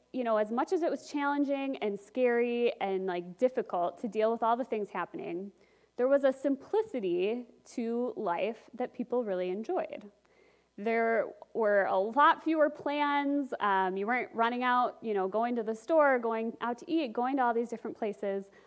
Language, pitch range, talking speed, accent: English, 215-290 Hz, 185 wpm, American